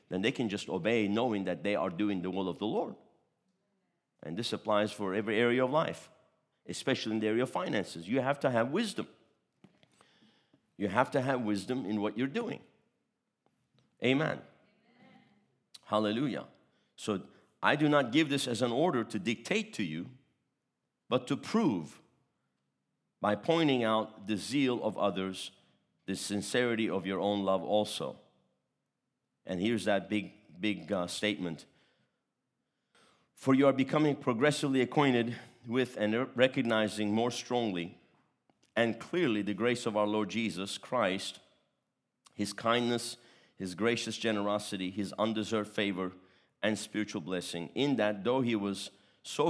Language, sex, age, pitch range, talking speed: English, male, 50-69, 95-125 Hz, 145 wpm